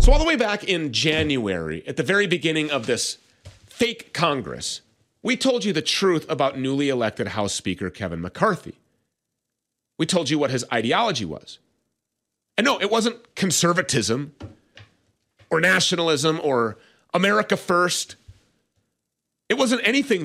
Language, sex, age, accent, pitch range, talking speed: English, male, 30-49, American, 130-195 Hz, 140 wpm